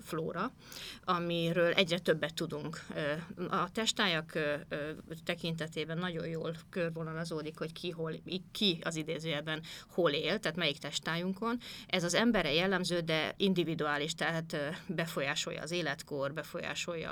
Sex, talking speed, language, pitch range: female, 115 wpm, Hungarian, 155-185 Hz